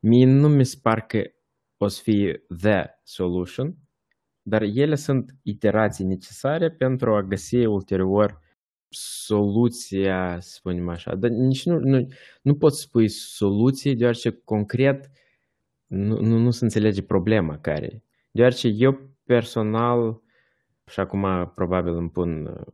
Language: Romanian